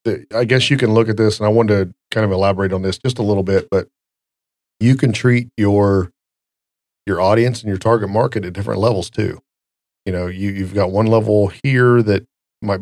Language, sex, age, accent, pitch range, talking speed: English, male, 40-59, American, 95-110 Hz, 210 wpm